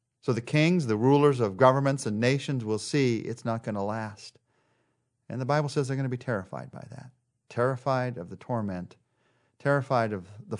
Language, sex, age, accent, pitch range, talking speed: English, male, 40-59, American, 115-150 Hz, 190 wpm